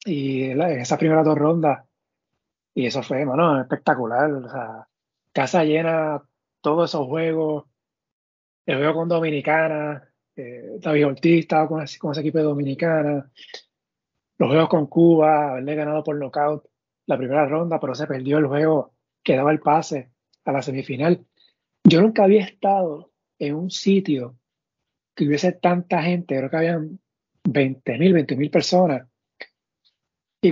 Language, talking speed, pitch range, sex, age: Spanish, 150 wpm, 140-175 Hz, male, 30-49